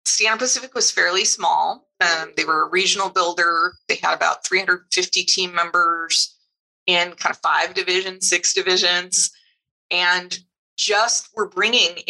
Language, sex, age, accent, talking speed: English, female, 30-49, American, 140 wpm